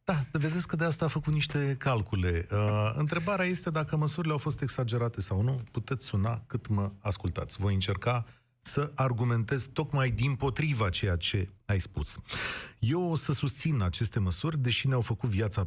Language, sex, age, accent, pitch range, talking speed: Romanian, male, 30-49, native, 115-155 Hz, 170 wpm